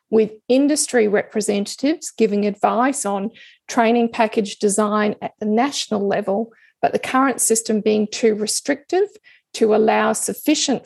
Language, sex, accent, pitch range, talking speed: English, female, Australian, 210-245 Hz, 125 wpm